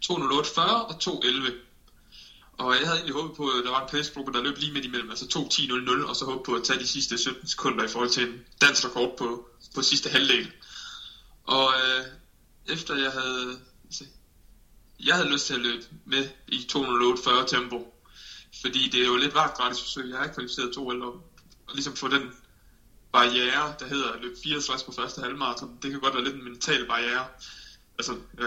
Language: Danish